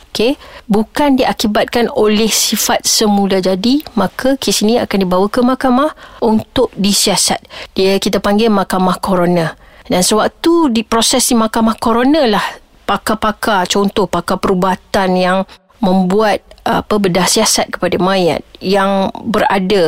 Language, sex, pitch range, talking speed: Malay, female, 200-255 Hz, 120 wpm